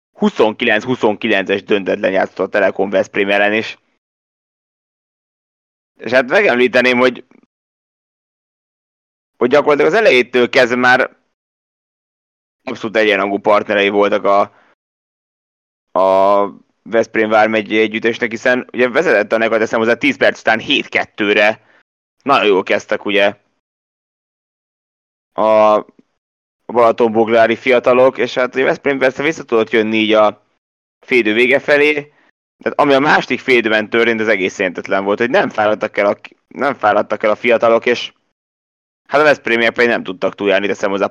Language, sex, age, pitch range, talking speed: Hungarian, male, 20-39, 105-125 Hz, 125 wpm